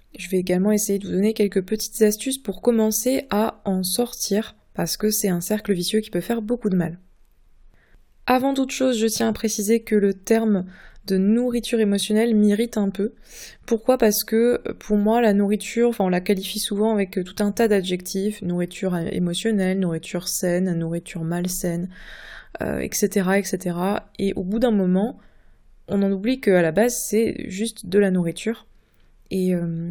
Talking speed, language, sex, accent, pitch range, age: 170 wpm, French, female, French, 185-220 Hz, 20-39